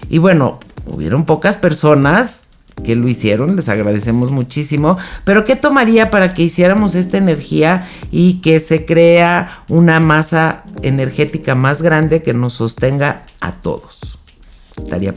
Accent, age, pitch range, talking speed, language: Mexican, 50-69, 115-170 Hz, 135 wpm, Spanish